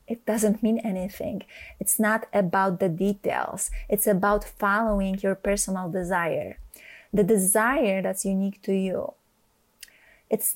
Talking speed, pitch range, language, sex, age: 125 wpm, 195-220 Hz, English, female, 20-39